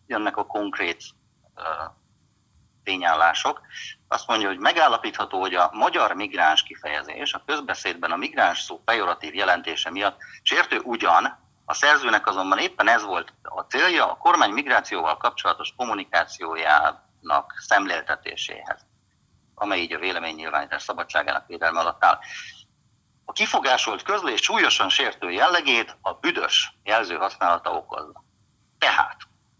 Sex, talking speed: male, 120 wpm